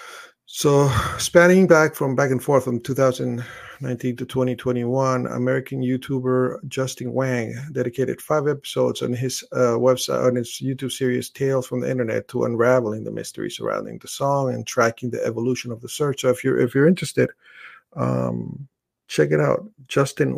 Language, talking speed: English, 160 wpm